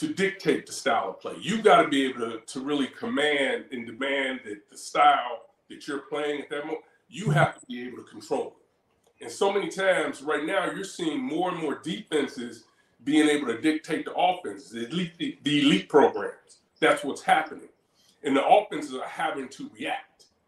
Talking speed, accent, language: 195 wpm, American, English